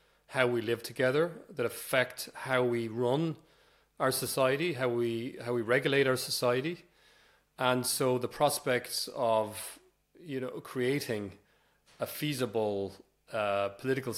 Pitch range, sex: 115-140 Hz, male